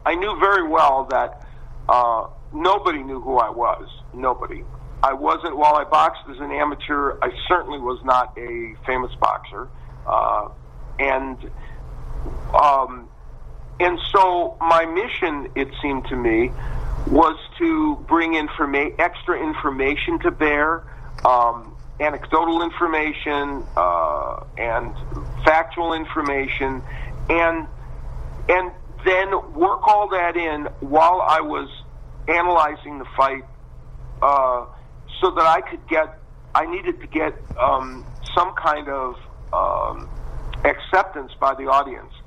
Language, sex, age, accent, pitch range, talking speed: English, male, 50-69, American, 115-165 Hz, 120 wpm